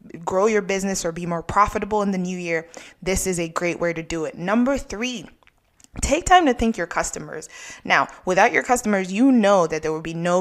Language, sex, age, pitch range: English, female, 20-39, 175-210 Hz